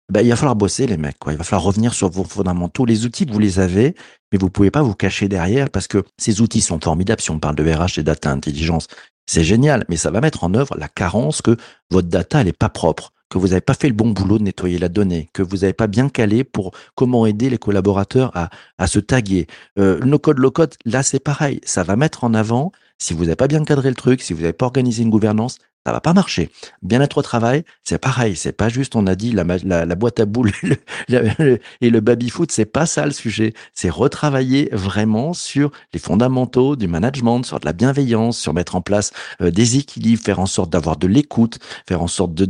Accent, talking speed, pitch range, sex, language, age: French, 245 wpm, 95-130 Hz, male, French, 50-69